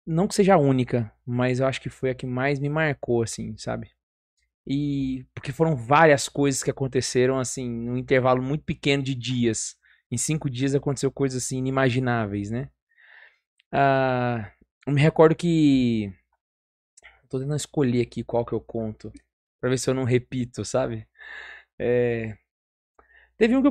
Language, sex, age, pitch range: Portuguese, male, 20-39, 120-145 Hz